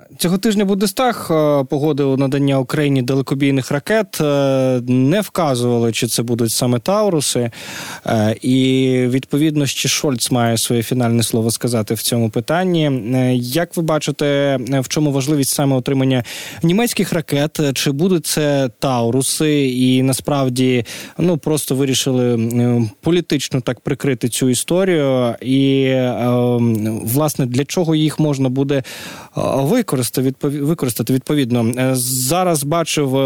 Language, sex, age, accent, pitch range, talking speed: Ukrainian, male, 20-39, native, 125-150 Hz, 115 wpm